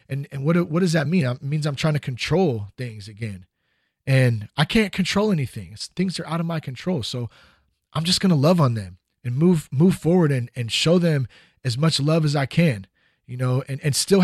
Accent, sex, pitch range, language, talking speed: American, male, 120-170 Hz, English, 230 wpm